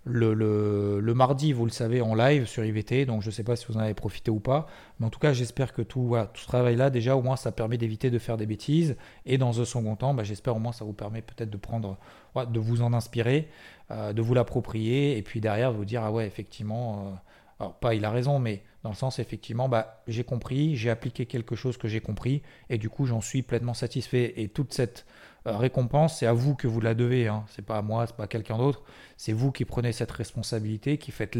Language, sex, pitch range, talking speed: French, male, 110-135 Hz, 255 wpm